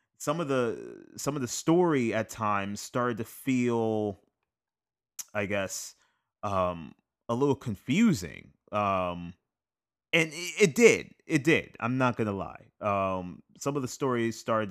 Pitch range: 95-115 Hz